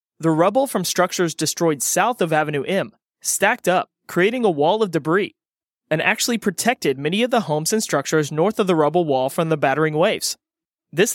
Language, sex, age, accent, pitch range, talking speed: English, male, 20-39, American, 160-210 Hz, 190 wpm